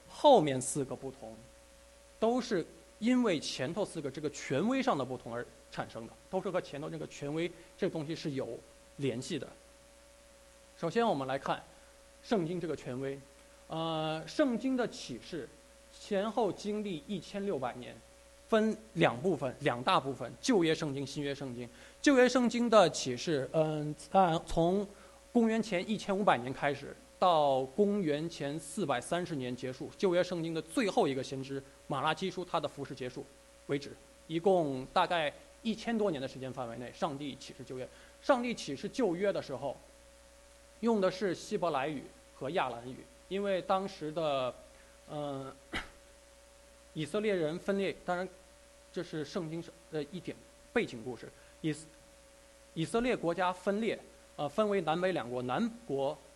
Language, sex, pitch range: English, male, 145-230 Hz